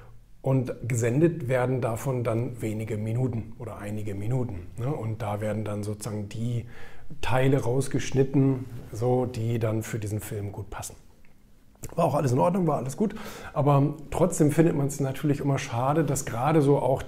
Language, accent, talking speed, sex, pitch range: German, German, 160 wpm, male, 115-135 Hz